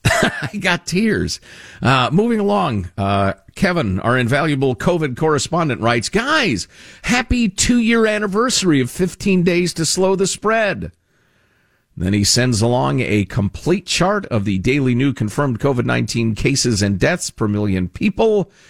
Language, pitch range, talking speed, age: English, 110-180 Hz, 140 wpm, 50-69